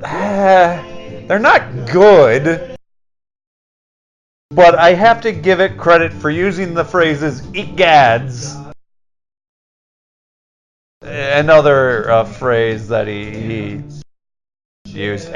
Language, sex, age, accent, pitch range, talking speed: English, male, 40-59, American, 110-165 Hz, 85 wpm